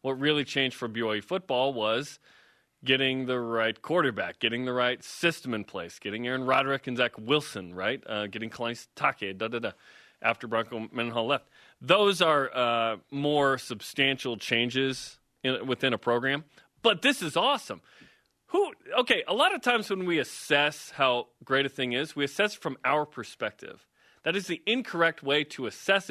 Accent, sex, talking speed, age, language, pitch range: American, male, 170 wpm, 30-49, English, 125-160 Hz